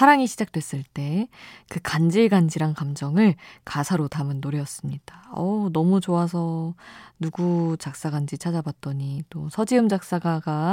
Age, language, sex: 20-39, Korean, female